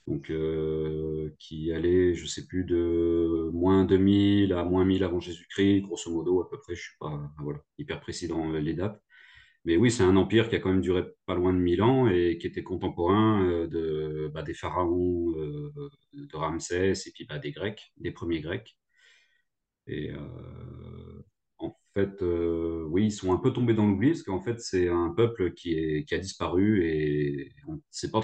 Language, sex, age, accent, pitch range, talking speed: French, male, 30-49, French, 85-105 Hz, 200 wpm